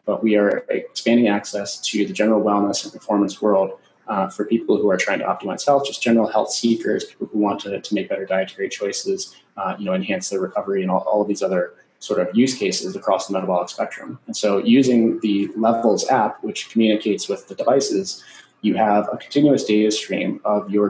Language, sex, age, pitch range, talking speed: English, male, 30-49, 105-120 Hz, 210 wpm